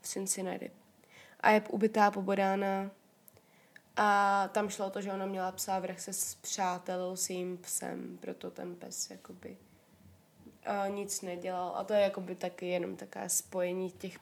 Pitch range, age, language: 185-210 Hz, 20-39, Czech